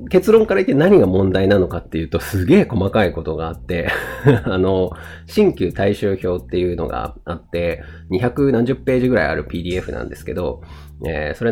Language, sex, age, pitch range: Japanese, male, 30-49, 85-125 Hz